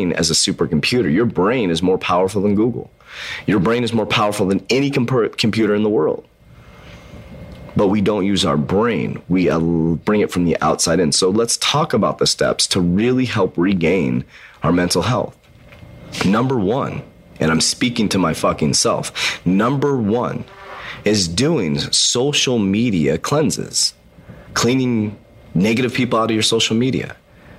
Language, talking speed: English, 155 wpm